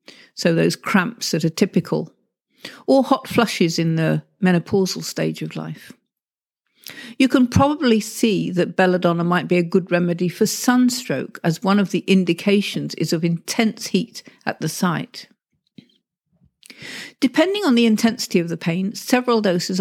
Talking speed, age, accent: 150 wpm, 50-69, British